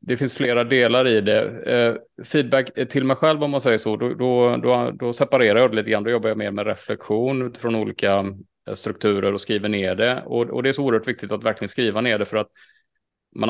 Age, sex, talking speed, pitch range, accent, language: 30-49, male, 230 wpm, 100-120 Hz, Norwegian, Swedish